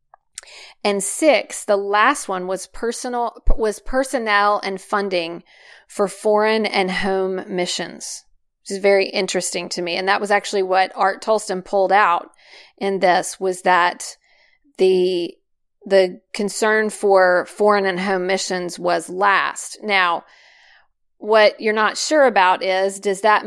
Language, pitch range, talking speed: English, 185-215 Hz, 140 wpm